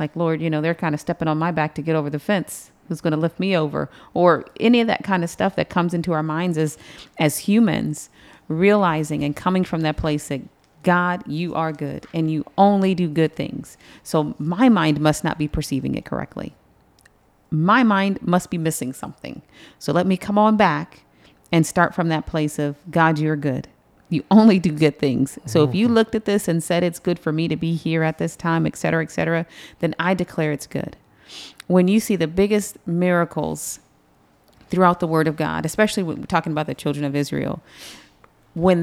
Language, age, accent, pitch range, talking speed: English, 40-59, American, 155-185 Hz, 210 wpm